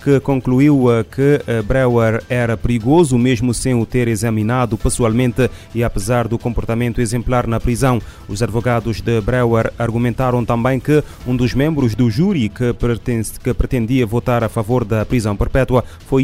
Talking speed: 150 wpm